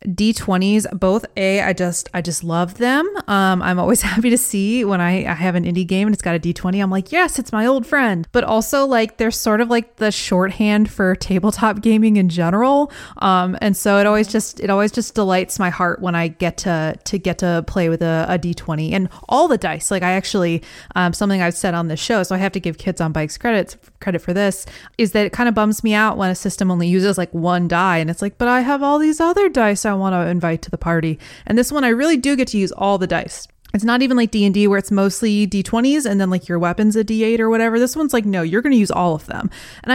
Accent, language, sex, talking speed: American, English, female, 260 wpm